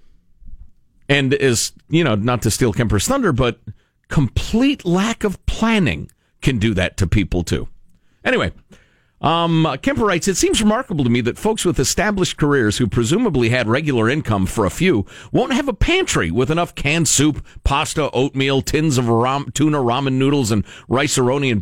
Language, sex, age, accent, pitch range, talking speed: English, male, 50-69, American, 110-155 Hz, 170 wpm